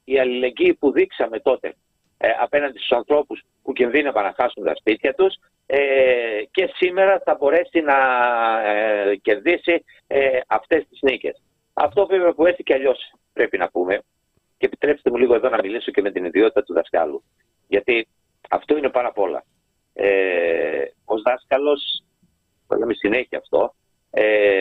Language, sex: Greek, male